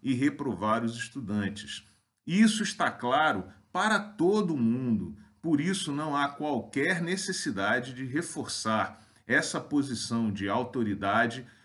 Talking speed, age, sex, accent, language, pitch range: 115 wpm, 40-59, male, Brazilian, Portuguese, 110-170 Hz